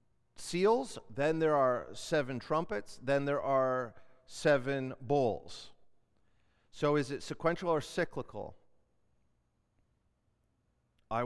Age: 40-59